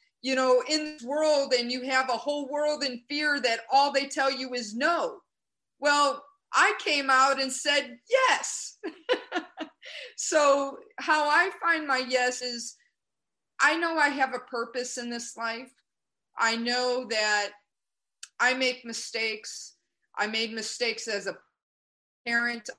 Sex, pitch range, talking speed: female, 240-295 Hz, 145 wpm